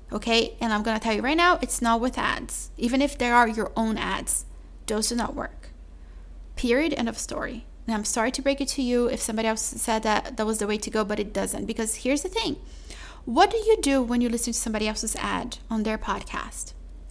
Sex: female